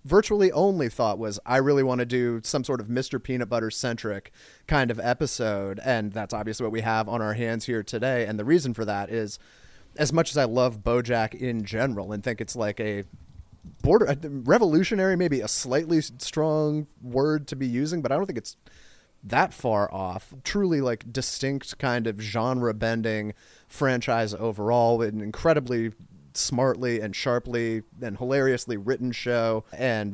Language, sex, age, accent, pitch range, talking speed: English, male, 30-49, American, 110-135 Hz, 175 wpm